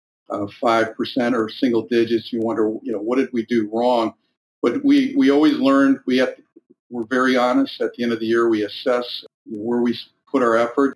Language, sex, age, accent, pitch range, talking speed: English, male, 50-69, American, 115-140 Hz, 215 wpm